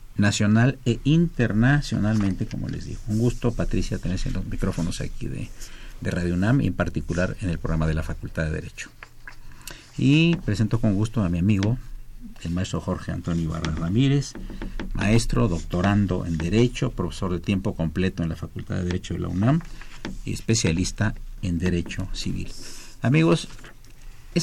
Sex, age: male, 50-69